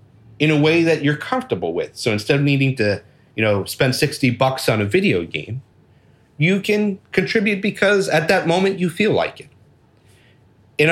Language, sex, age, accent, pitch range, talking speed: English, male, 40-59, American, 115-155 Hz, 180 wpm